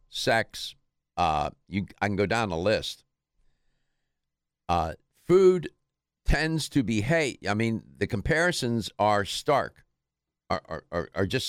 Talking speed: 125 wpm